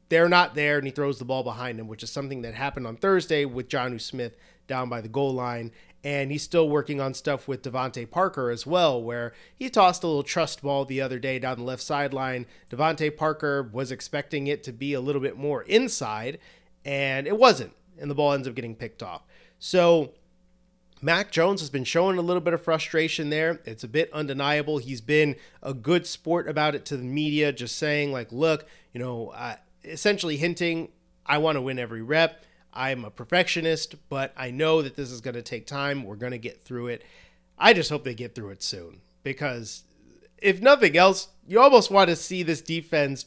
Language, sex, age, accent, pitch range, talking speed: English, male, 30-49, American, 130-165 Hz, 210 wpm